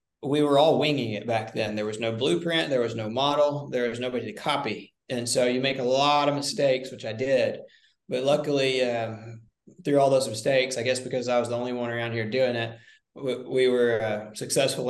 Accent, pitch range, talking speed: American, 120-135 Hz, 220 wpm